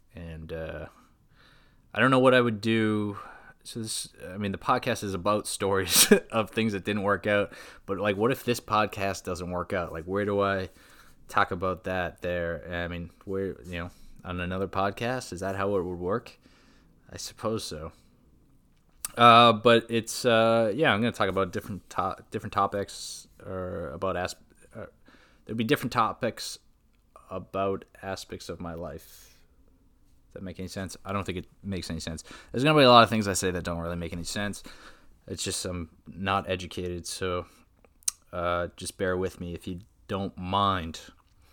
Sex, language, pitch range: male, English, 90-110 Hz